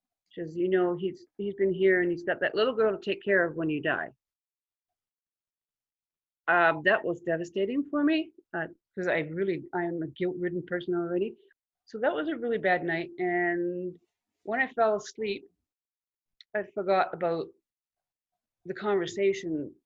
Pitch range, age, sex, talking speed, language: 175-225 Hz, 40-59, female, 155 wpm, English